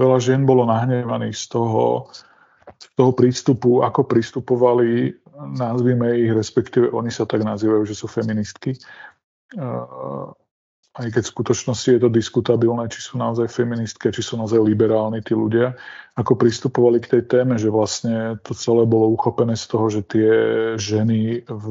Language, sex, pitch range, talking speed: Slovak, male, 110-120 Hz, 150 wpm